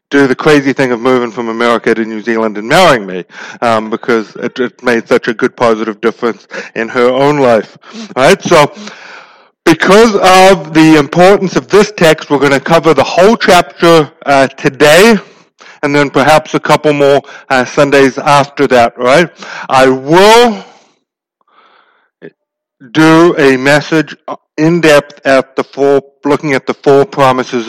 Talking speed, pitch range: 155 wpm, 125-170 Hz